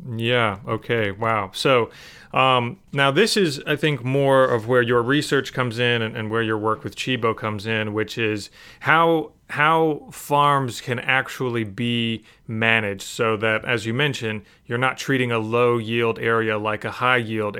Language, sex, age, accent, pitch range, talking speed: English, male, 30-49, American, 110-130 Hz, 175 wpm